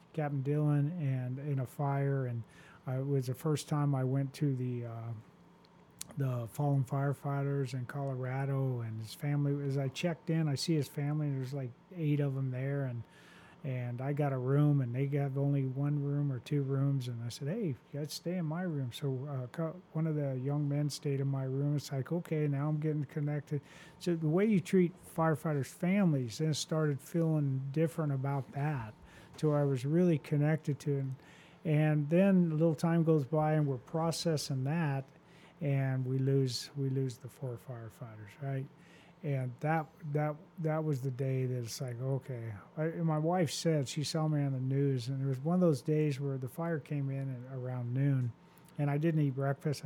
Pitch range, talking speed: 130-155 Hz, 200 wpm